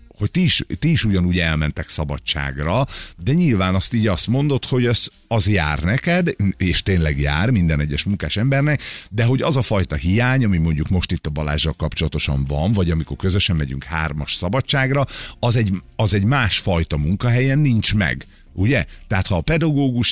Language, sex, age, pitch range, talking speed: Hungarian, male, 50-69, 75-110 Hz, 175 wpm